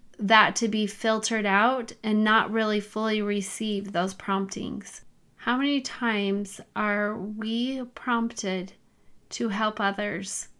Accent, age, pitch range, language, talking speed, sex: American, 30-49, 195-225 Hz, English, 120 wpm, female